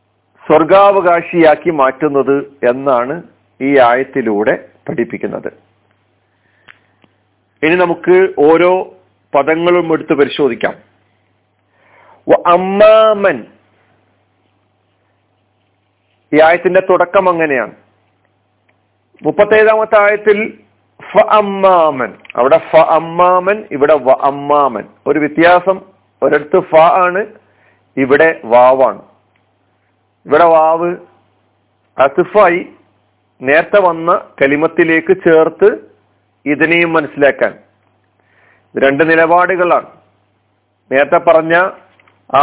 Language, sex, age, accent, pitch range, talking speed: Malayalam, male, 40-59, native, 105-175 Hz, 65 wpm